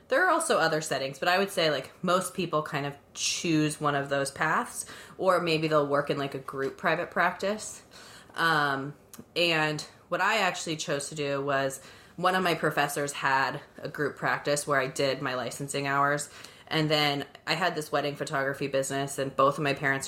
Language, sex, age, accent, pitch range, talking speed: English, female, 20-39, American, 140-165 Hz, 195 wpm